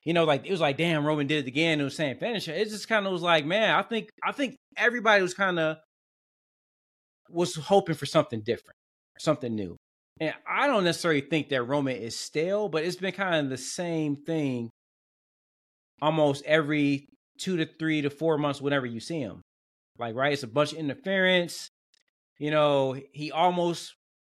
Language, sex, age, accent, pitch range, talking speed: English, male, 20-39, American, 130-165 Hz, 190 wpm